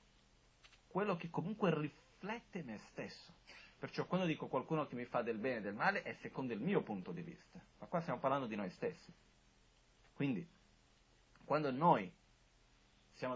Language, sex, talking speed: Italian, male, 160 wpm